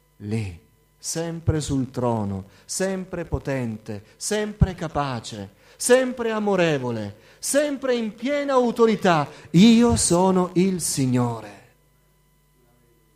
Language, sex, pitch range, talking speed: Italian, male, 110-145 Hz, 80 wpm